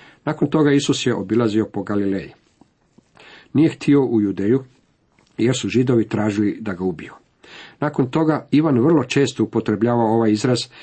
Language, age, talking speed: Croatian, 50-69, 145 wpm